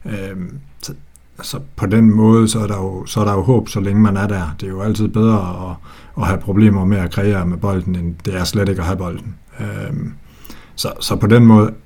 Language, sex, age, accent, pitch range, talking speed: Danish, male, 60-79, native, 95-110 Hz, 245 wpm